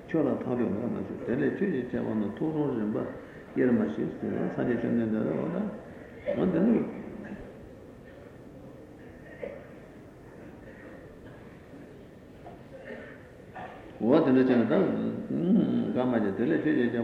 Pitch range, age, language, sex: 115-125 Hz, 60-79, Italian, male